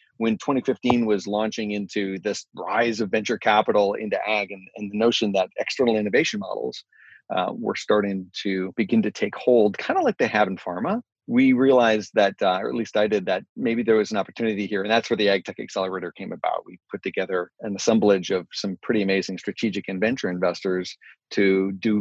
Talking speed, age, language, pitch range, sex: 205 wpm, 40-59, English, 95-110 Hz, male